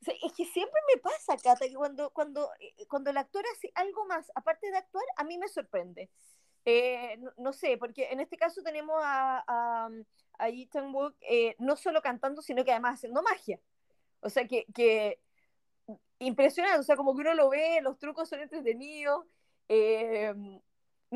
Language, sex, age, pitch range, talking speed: Spanish, female, 20-39, 230-295 Hz, 180 wpm